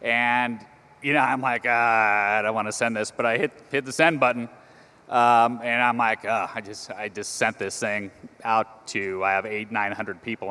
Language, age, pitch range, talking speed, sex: English, 30-49, 110-140 Hz, 225 wpm, male